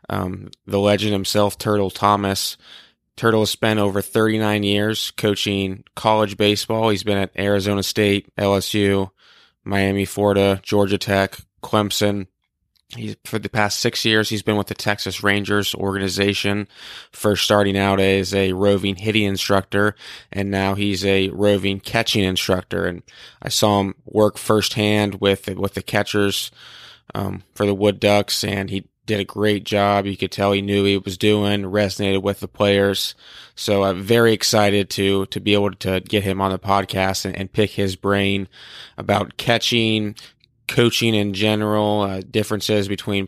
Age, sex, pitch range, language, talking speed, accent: 20-39, male, 100-105 Hz, English, 160 wpm, American